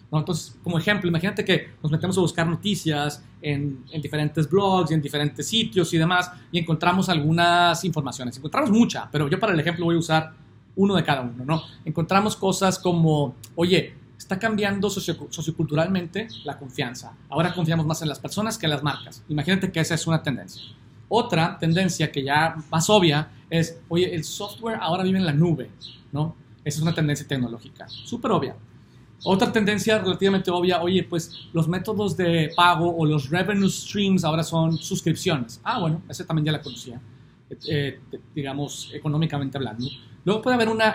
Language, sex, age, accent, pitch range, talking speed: Spanish, male, 30-49, Mexican, 145-185 Hz, 175 wpm